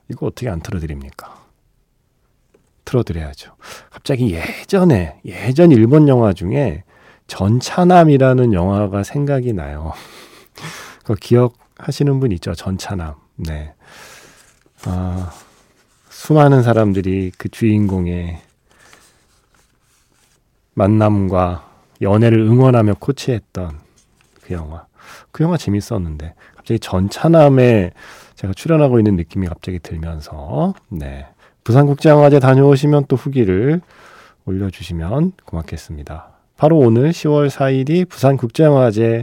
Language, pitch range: Korean, 95-140 Hz